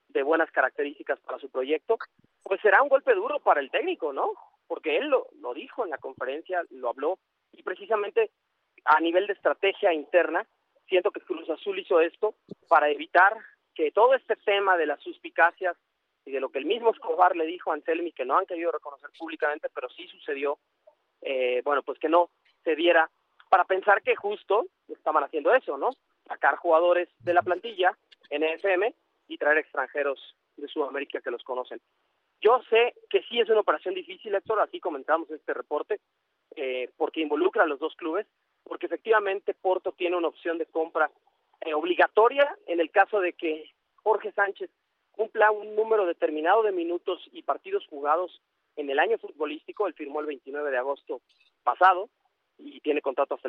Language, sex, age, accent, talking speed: Spanish, male, 30-49, Mexican, 175 wpm